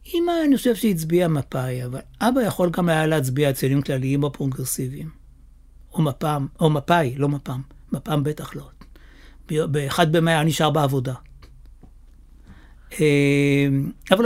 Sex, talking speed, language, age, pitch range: male, 120 wpm, Hebrew, 60-79, 135-165 Hz